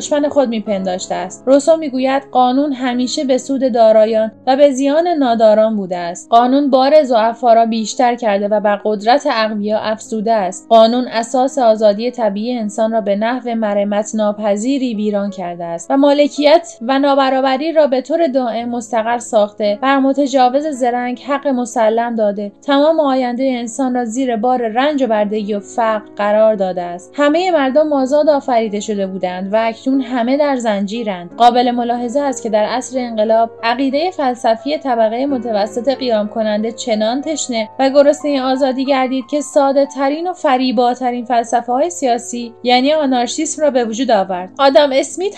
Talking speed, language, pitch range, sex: 155 wpm, Persian, 225-280 Hz, female